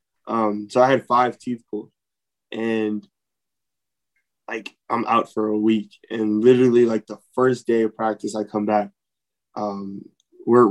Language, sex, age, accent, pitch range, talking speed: English, male, 20-39, American, 110-140 Hz, 150 wpm